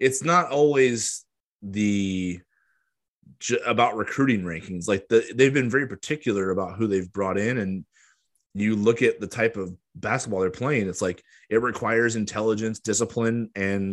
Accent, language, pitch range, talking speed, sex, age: American, English, 95-120 Hz, 145 wpm, male, 20-39